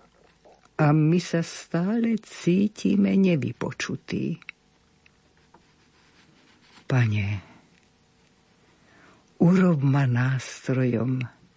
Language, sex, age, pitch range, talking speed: Slovak, female, 60-79, 135-185 Hz, 50 wpm